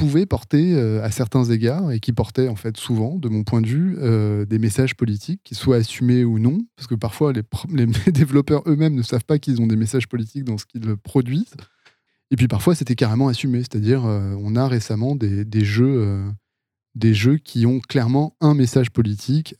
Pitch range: 110-130 Hz